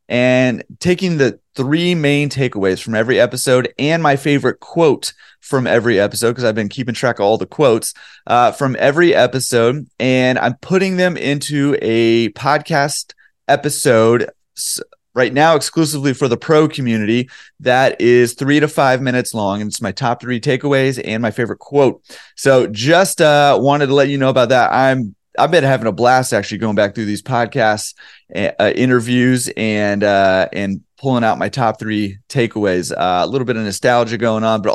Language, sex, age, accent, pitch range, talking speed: English, male, 30-49, American, 110-145 Hz, 180 wpm